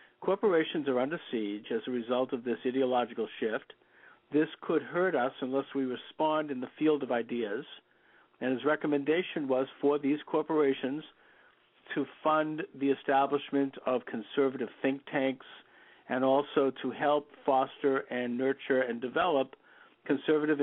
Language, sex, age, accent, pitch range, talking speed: English, male, 50-69, American, 130-150 Hz, 140 wpm